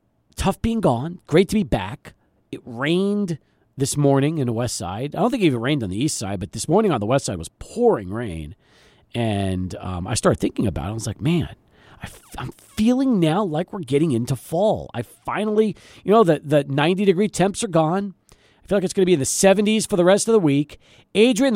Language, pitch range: English, 155-250 Hz